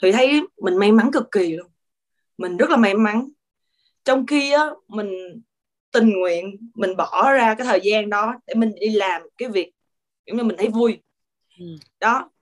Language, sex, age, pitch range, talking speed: Vietnamese, female, 20-39, 190-250 Hz, 185 wpm